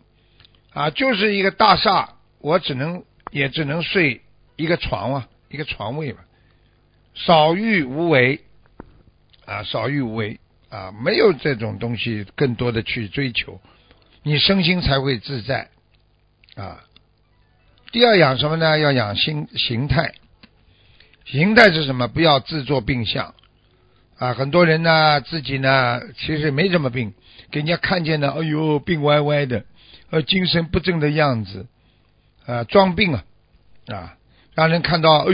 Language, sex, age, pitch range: Chinese, male, 60-79, 115-165 Hz